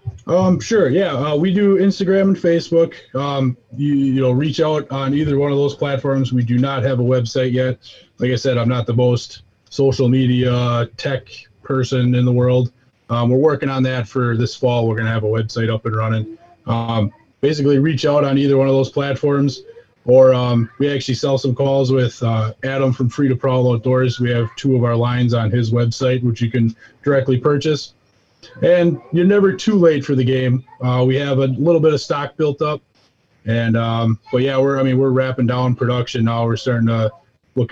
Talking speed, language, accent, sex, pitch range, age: 210 wpm, English, American, male, 120-140 Hz, 20-39